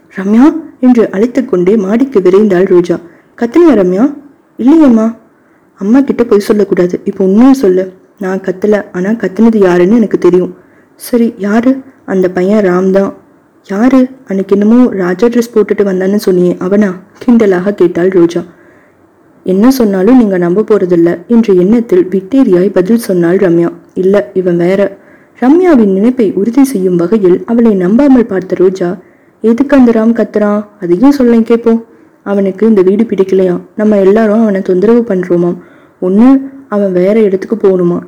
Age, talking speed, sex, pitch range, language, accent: 20-39, 95 wpm, female, 185-235 Hz, Tamil, native